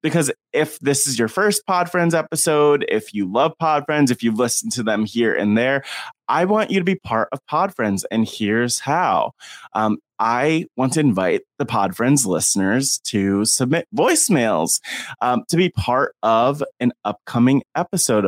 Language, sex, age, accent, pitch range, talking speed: English, male, 20-39, American, 115-170 Hz, 175 wpm